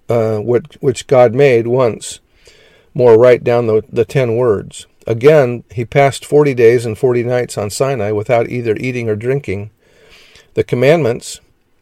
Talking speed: 150 wpm